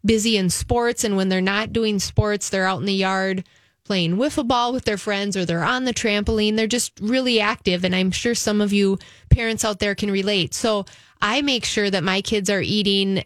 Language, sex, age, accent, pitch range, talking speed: English, female, 30-49, American, 185-220 Hz, 220 wpm